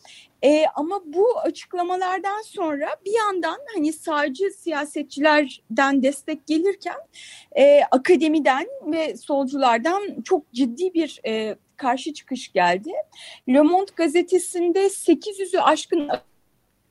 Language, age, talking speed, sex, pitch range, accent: Turkish, 30-49, 95 wpm, female, 270-350 Hz, native